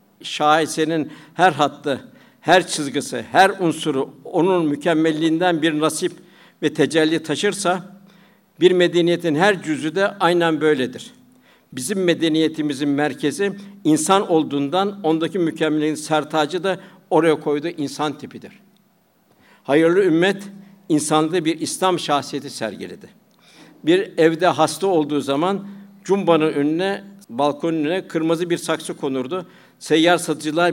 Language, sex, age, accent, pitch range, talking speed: Turkish, male, 60-79, native, 150-185 Hz, 110 wpm